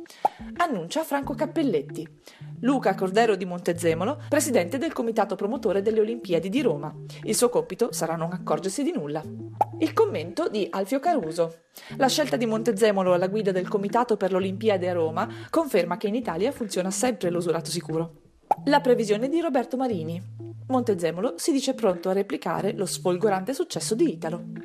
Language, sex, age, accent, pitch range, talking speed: Italian, female, 40-59, native, 175-265 Hz, 160 wpm